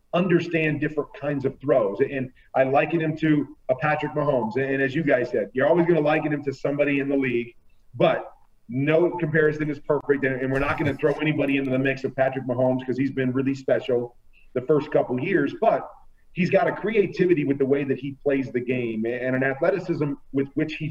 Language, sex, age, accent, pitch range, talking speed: English, male, 40-59, American, 135-160 Hz, 215 wpm